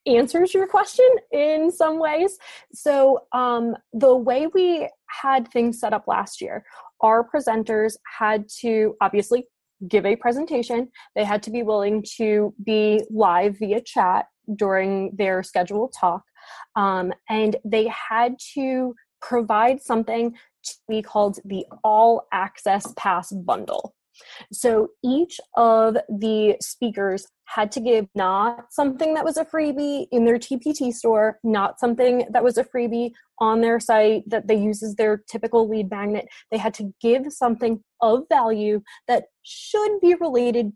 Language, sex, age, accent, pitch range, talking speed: English, female, 20-39, American, 215-260 Hz, 145 wpm